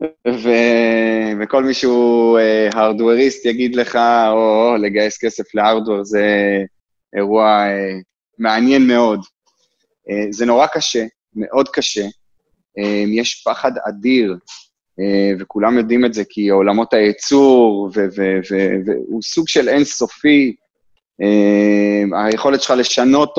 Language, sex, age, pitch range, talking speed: Hebrew, male, 20-39, 100-120 Hz, 120 wpm